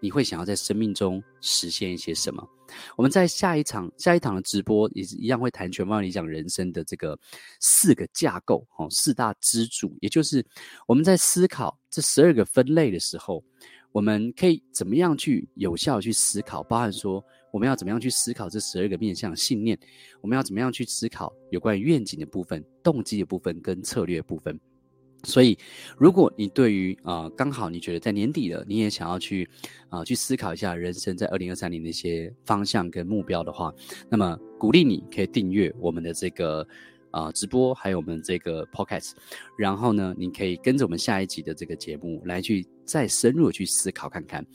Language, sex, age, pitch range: Chinese, male, 30-49, 90-130 Hz